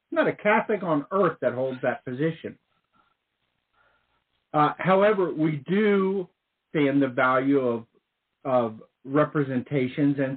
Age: 50-69